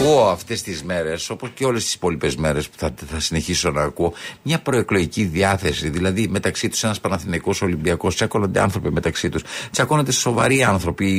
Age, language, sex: 50-69, Greek, male